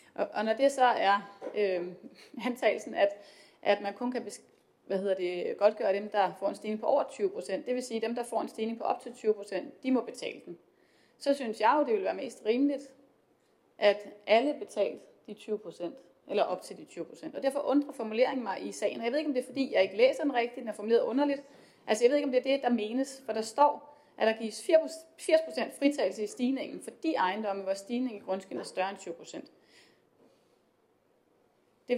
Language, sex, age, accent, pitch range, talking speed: Danish, female, 30-49, native, 215-280 Hz, 210 wpm